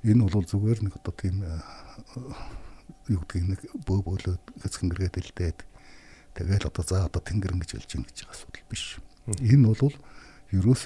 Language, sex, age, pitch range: Korean, male, 60-79, 95-115 Hz